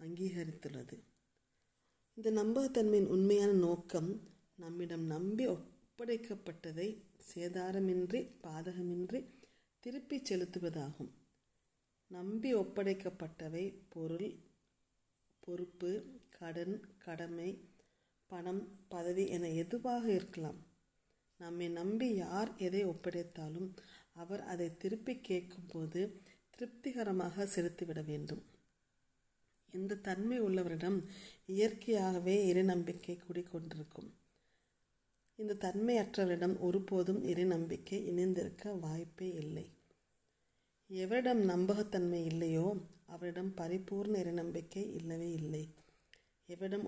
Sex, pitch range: female, 170-200 Hz